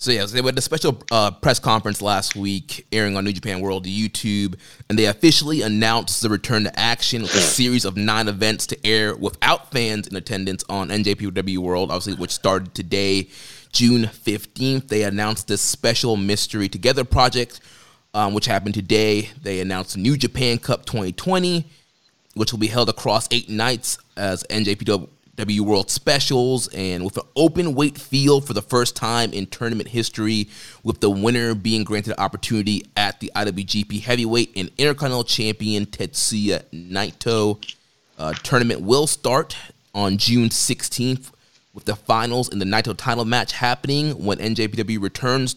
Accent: American